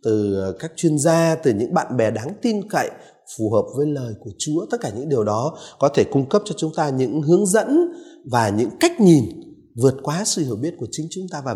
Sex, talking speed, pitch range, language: male, 240 wpm, 110-165 Hz, Vietnamese